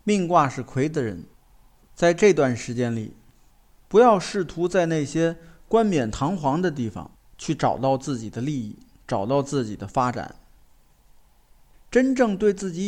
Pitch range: 130-200 Hz